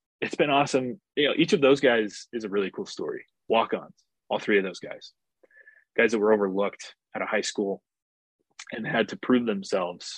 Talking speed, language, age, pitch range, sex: 195 wpm, English, 20-39, 100-125 Hz, male